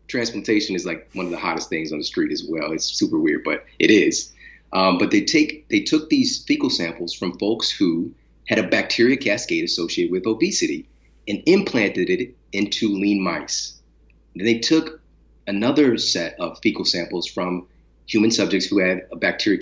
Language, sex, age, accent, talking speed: English, male, 30-49, American, 180 wpm